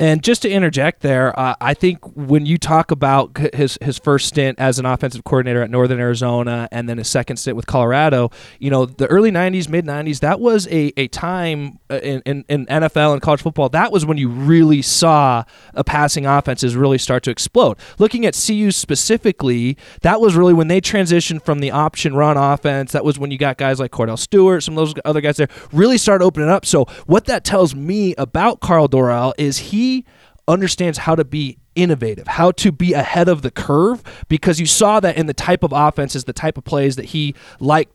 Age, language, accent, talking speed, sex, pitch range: 20-39, English, American, 210 wpm, male, 135-180 Hz